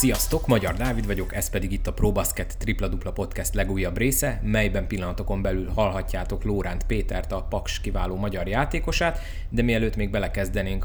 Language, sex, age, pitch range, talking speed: Hungarian, male, 20-39, 90-105 Hz, 155 wpm